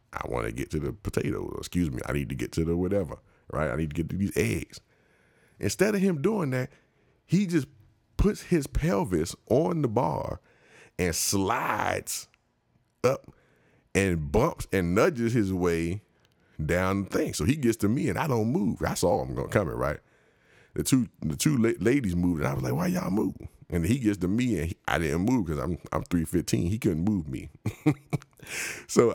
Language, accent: English, American